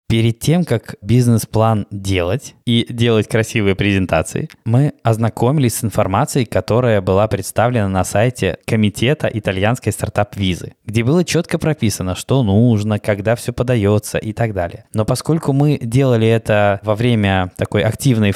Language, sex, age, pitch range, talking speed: Russian, male, 20-39, 105-125 Hz, 135 wpm